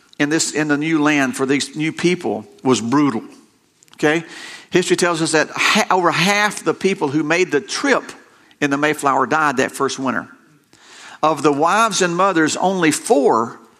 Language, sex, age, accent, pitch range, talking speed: English, male, 50-69, American, 140-185 Hz, 170 wpm